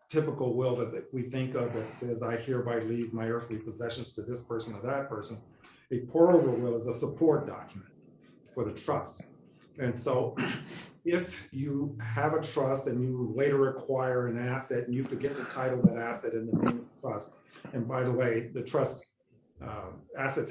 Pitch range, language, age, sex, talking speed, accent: 115-140 Hz, English, 50-69, male, 190 wpm, American